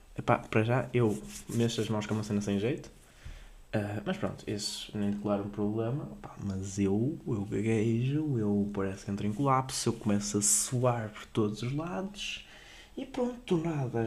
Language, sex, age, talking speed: Portuguese, male, 20-39, 180 wpm